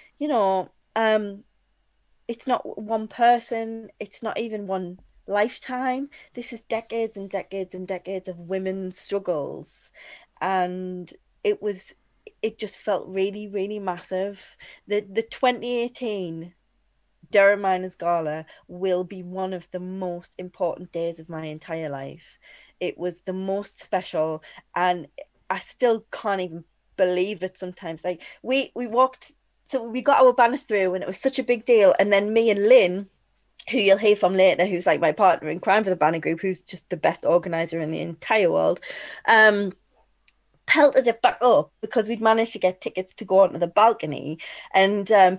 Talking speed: 165 wpm